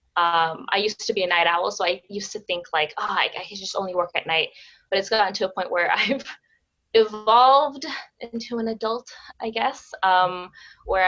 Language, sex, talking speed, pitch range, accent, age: English, female, 210 wpm, 175-225 Hz, American, 20-39